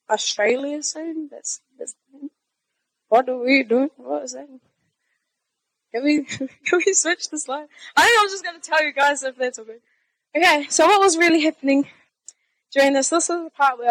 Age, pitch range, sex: 10-29, 255-335 Hz, female